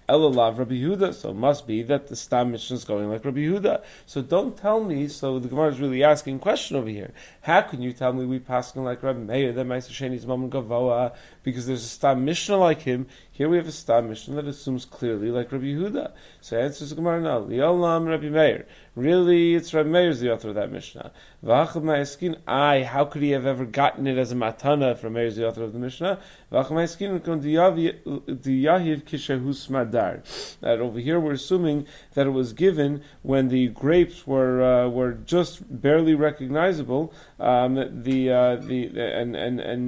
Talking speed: 195 wpm